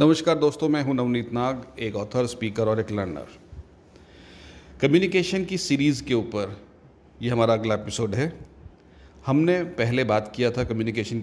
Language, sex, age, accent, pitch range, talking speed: Hindi, male, 40-59, native, 95-125 Hz, 150 wpm